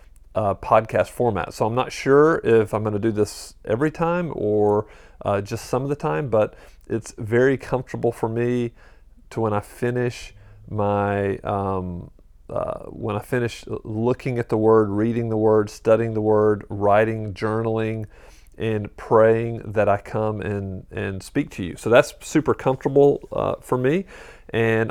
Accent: American